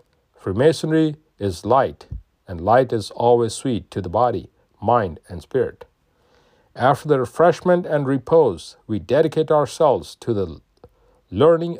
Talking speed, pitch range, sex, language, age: 125 wpm, 110-160 Hz, male, English, 50-69